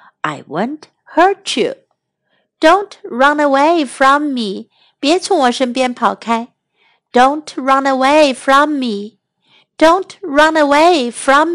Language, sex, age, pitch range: Chinese, female, 60-79, 225-315 Hz